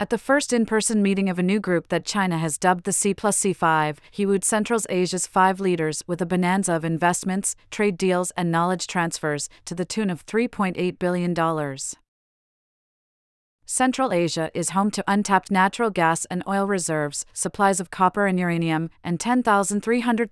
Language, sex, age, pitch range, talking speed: English, female, 30-49, 165-200 Hz, 170 wpm